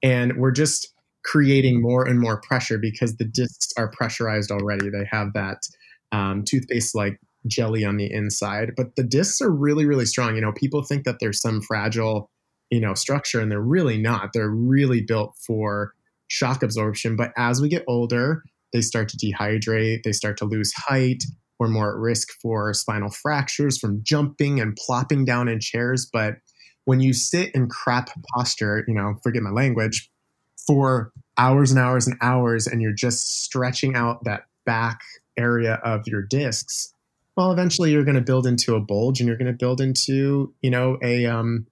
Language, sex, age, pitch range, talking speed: English, male, 30-49, 110-130 Hz, 185 wpm